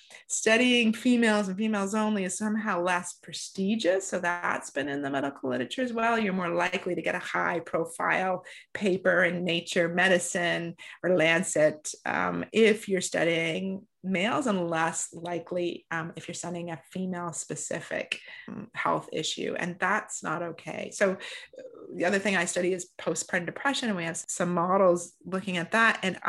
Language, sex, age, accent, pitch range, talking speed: English, female, 30-49, American, 170-215 Hz, 160 wpm